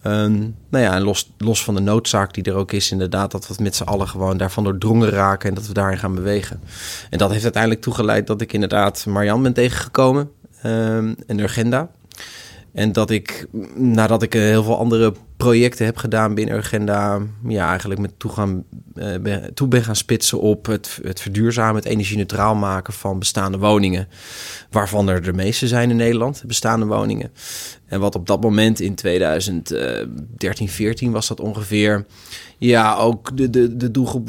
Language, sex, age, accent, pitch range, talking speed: Dutch, male, 20-39, Dutch, 100-120 Hz, 175 wpm